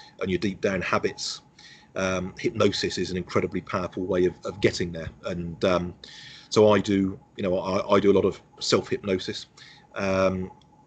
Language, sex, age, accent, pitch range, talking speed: English, male, 40-59, British, 90-100 Hz, 175 wpm